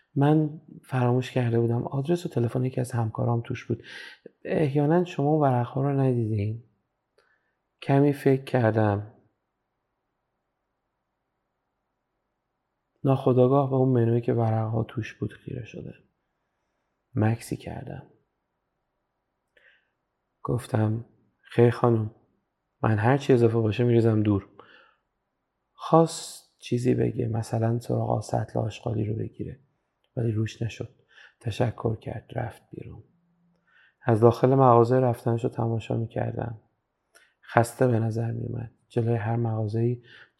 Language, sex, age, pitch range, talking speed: Persian, male, 30-49, 115-130 Hz, 105 wpm